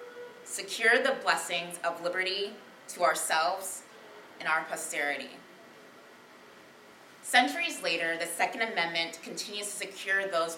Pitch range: 170-205 Hz